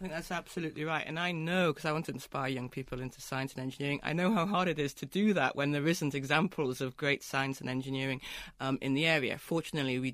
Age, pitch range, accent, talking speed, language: 40-59, 135-175 Hz, British, 255 wpm, English